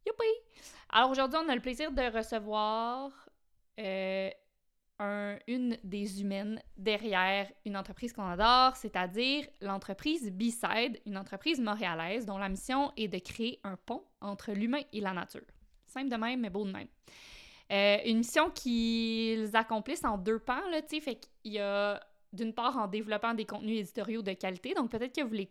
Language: French